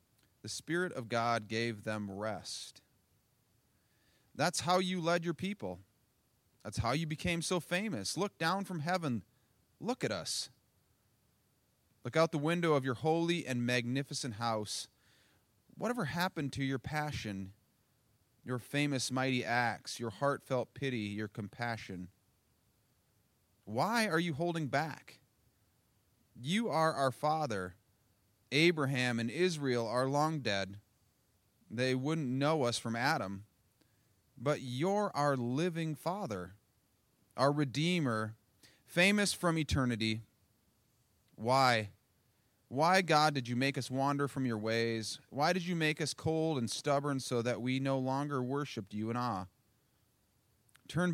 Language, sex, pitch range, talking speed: English, male, 110-155 Hz, 130 wpm